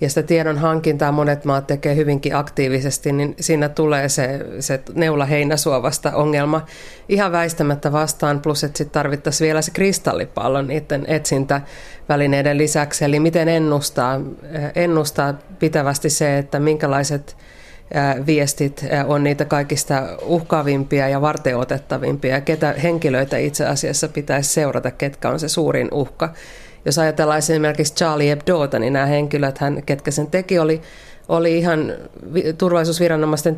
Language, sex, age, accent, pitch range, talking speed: Finnish, female, 30-49, native, 140-160 Hz, 130 wpm